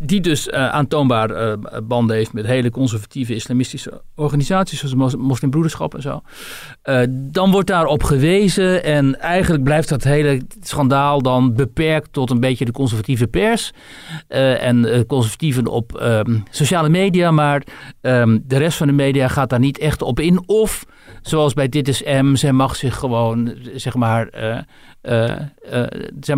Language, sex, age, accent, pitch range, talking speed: Dutch, male, 60-79, Dutch, 120-150 Hz, 165 wpm